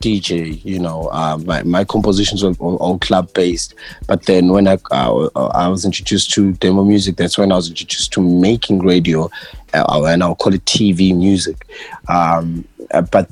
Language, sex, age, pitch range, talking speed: English, male, 20-39, 95-110 Hz, 175 wpm